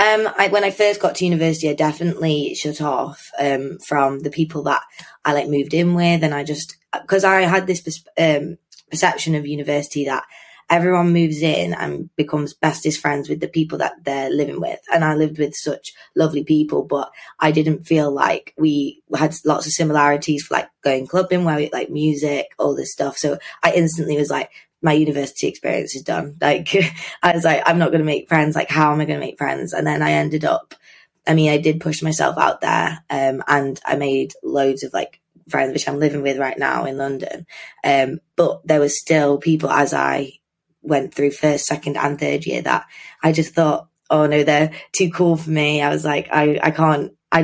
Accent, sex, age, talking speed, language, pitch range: British, female, 20-39, 205 wpm, English, 145-165 Hz